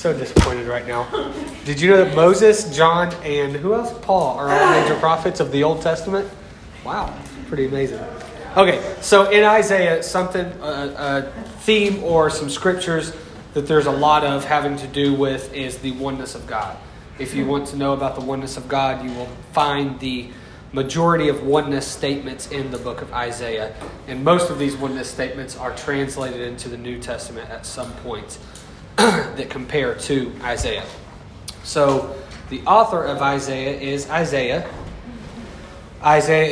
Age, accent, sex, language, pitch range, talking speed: 30-49, American, male, English, 130-155 Hz, 165 wpm